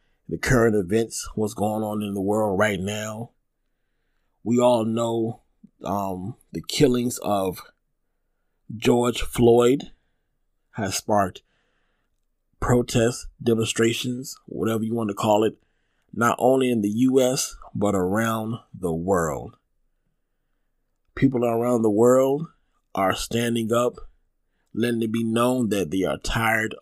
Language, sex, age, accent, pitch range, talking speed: English, male, 30-49, American, 105-125 Hz, 120 wpm